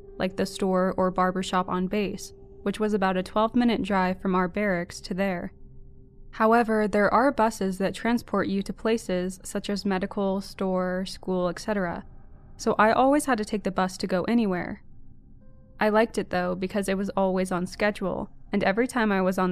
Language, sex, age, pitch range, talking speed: English, female, 20-39, 185-215 Hz, 185 wpm